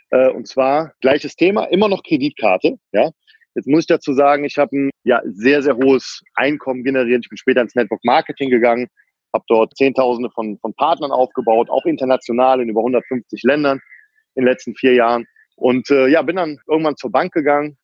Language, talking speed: German, 190 wpm